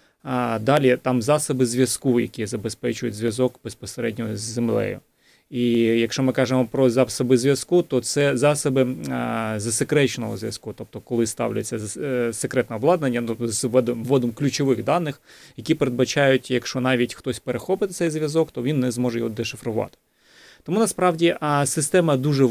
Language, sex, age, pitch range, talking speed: Ukrainian, male, 30-49, 115-140 Hz, 135 wpm